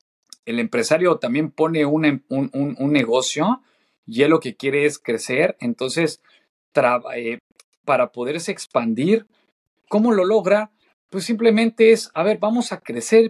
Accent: Mexican